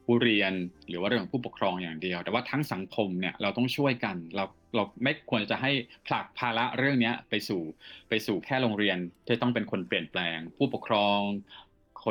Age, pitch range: 20-39, 100-125 Hz